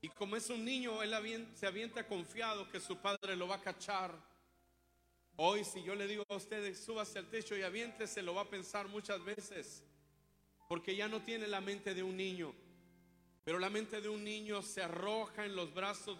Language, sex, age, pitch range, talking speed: Spanish, male, 40-59, 160-210 Hz, 205 wpm